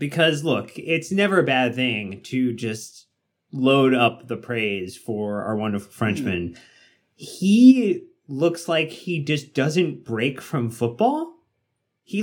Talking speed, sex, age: 130 wpm, male, 30-49